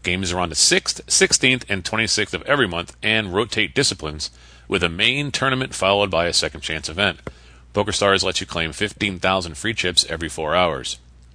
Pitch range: 75-115 Hz